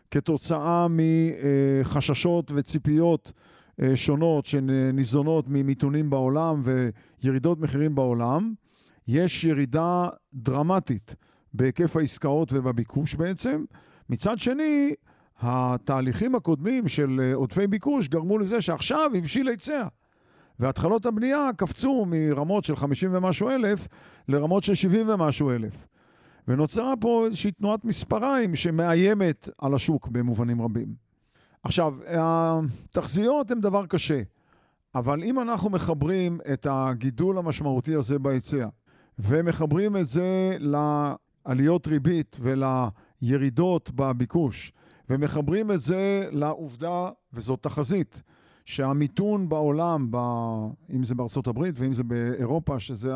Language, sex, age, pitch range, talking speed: Hebrew, male, 50-69, 135-185 Hz, 100 wpm